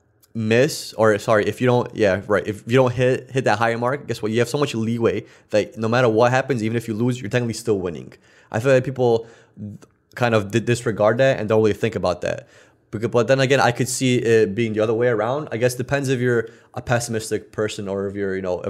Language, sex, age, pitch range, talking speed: English, male, 20-39, 105-120 Hz, 240 wpm